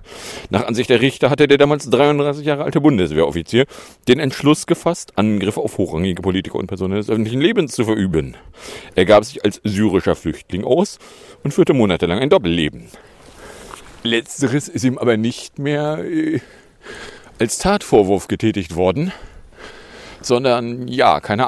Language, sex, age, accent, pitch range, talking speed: English, male, 40-59, German, 105-145 Hz, 140 wpm